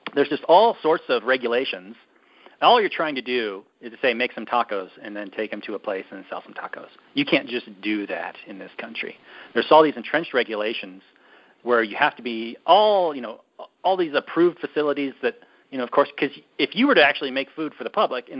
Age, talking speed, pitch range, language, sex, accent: 40-59, 230 wpm, 115-155 Hz, English, male, American